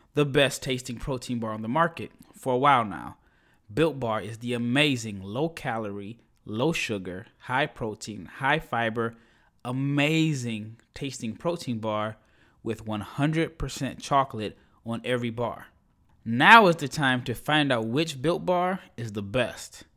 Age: 20-39